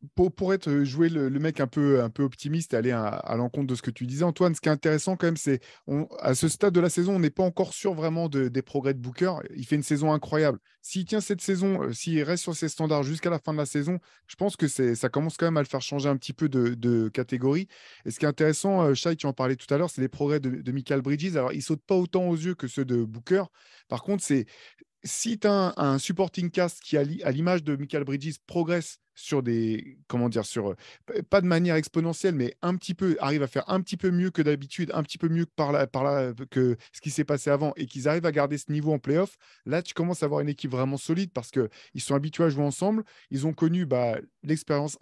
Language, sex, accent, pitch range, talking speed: French, male, French, 135-170 Hz, 265 wpm